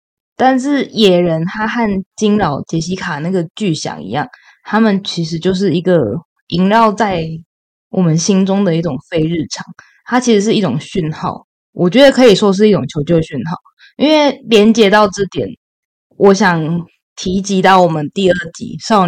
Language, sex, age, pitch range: Chinese, female, 20-39, 165-210 Hz